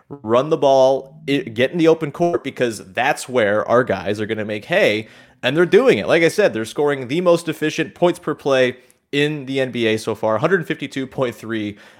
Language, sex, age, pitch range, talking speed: English, male, 30-49, 110-150 Hz, 200 wpm